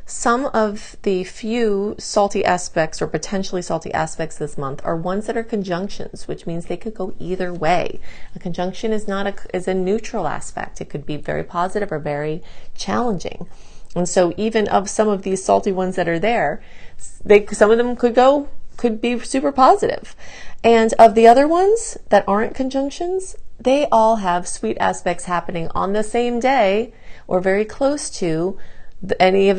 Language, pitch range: English, 170-230 Hz